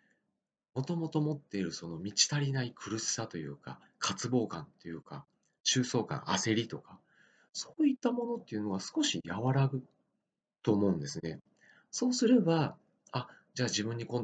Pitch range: 100-150 Hz